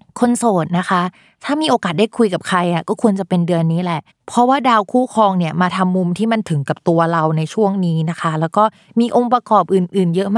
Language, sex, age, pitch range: Thai, female, 20-39, 175-220 Hz